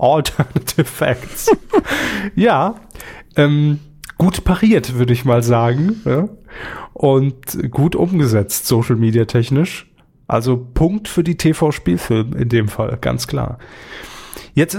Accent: German